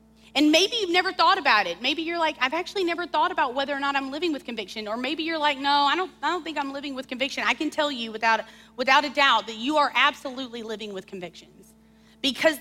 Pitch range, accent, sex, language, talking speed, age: 220-290 Hz, American, female, English, 245 wpm, 30-49